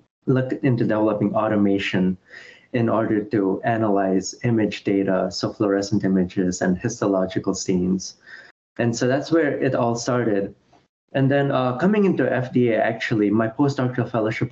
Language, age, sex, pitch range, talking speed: English, 20-39, male, 100-120 Hz, 135 wpm